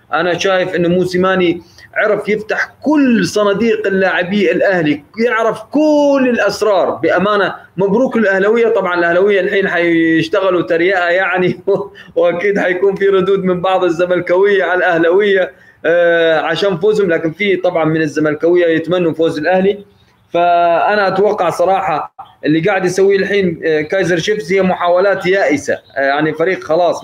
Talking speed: 125 wpm